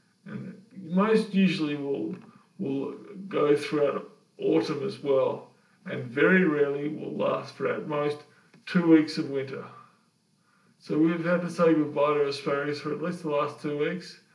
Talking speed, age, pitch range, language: 155 wpm, 20-39, 155-190 Hz, English